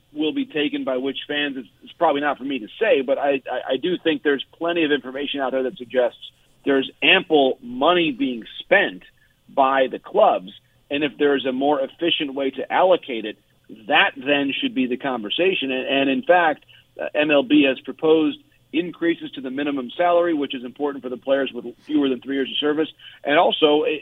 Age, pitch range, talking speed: 40-59, 135-160 Hz, 200 wpm